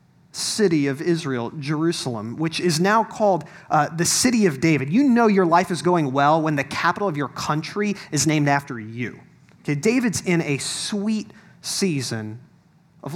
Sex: male